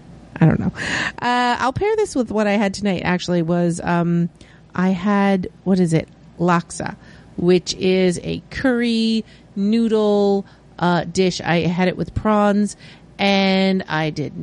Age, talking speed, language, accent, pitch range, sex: 40-59, 150 wpm, English, American, 170-215 Hz, female